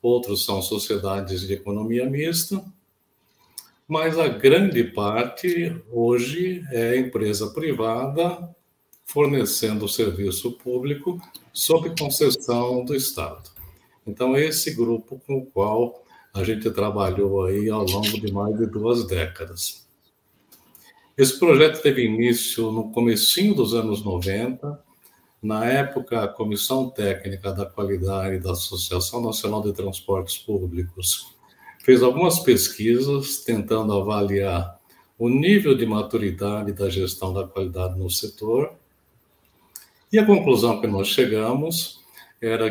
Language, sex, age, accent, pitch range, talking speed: Portuguese, male, 60-79, Brazilian, 100-135 Hz, 120 wpm